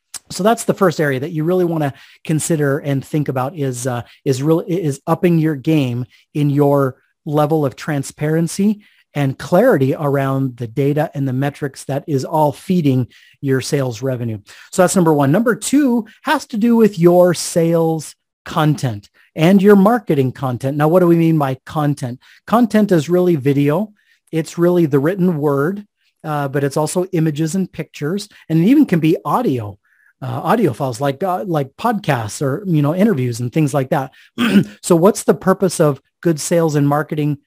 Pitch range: 140-175 Hz